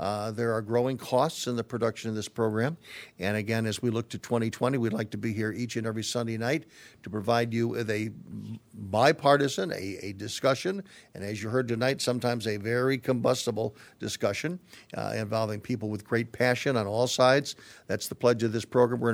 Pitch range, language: 110-125 Hz, English